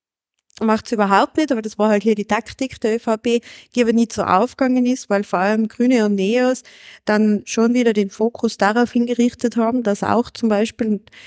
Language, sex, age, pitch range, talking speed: German, female, 20-39, 205-245 Hz, 195 wpm